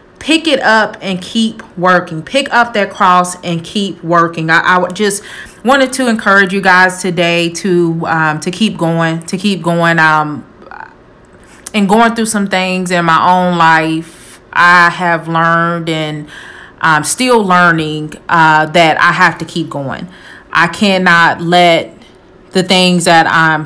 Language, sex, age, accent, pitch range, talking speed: English, female, 30-49, American, 165-190 Hz, 155 wpm